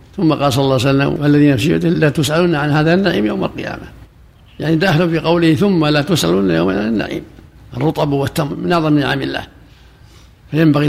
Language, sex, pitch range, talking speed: Arabic, male, 135-160 Hz, 180 wpm